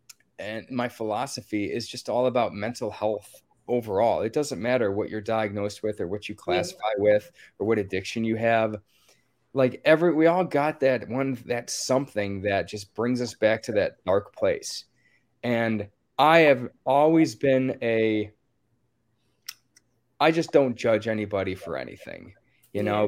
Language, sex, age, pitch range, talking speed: English, male, 20-39, 105-125 Hz, 155 wpm